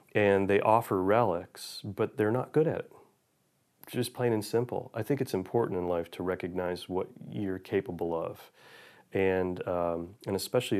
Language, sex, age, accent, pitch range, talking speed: English, male, 30-49, American, 90-115 Hz, 170 wpm